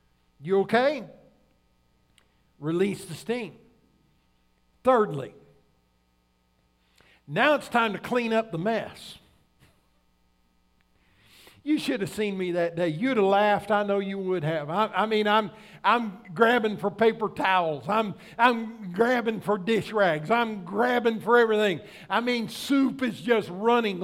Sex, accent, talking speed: male, American, 135 wpm